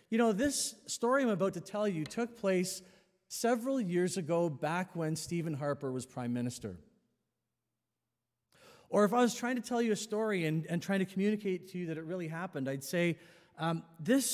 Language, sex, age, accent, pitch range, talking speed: English, male, 40-59, American, 120-180 Hz, 195 wpm